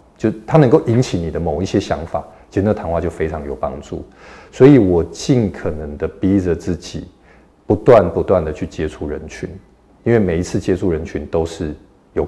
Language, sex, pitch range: Chinese, male, 80-100 Hz